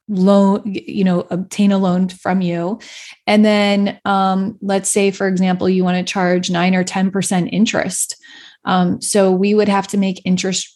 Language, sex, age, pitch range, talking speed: English, female, 20-39, 180-205 Hz, 175 wpm